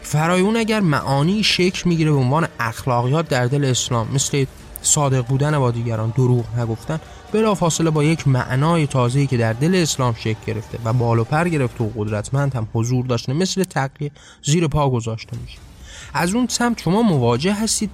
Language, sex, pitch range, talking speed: Persian, male, 120-170 Hz, 175 wpm